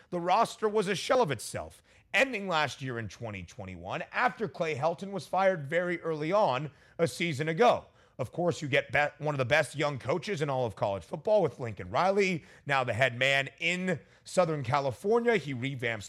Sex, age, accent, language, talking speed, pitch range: male, 30-49, American, English, 185 wpm, 130-185 Hz